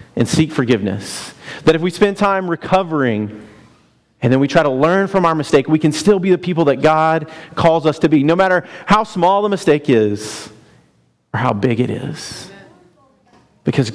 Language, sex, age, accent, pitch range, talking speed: English, male, 40-59, American, 125-170 Hz, 185 wpm